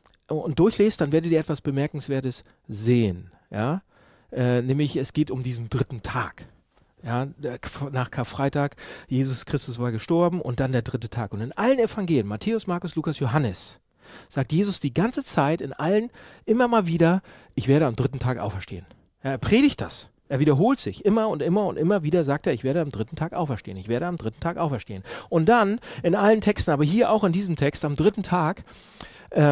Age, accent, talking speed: 40-59, German, 185 wpm